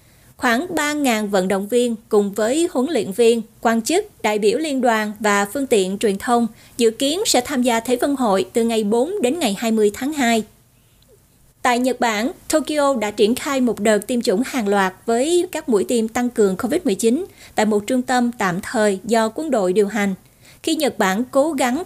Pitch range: 215-265 Hz